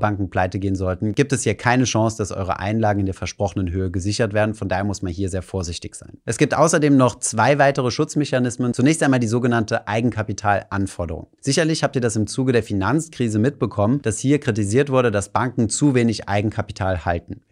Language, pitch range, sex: German, 100-130 Hz, male